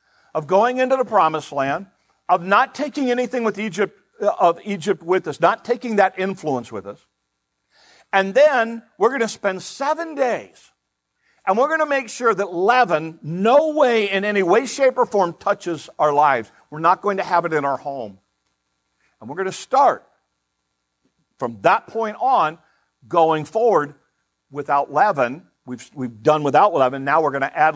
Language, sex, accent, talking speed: English, male, American, 175 wpm